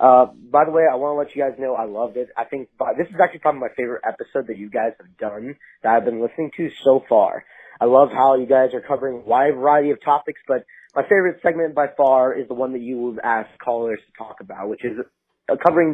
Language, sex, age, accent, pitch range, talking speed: English, male, 30-49, American, 125-160 Hz, 255 wpm